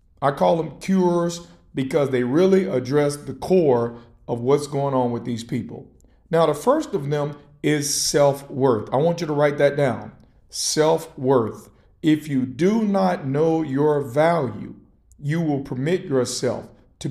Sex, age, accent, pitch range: male, 50-69, American, 130-170 Hz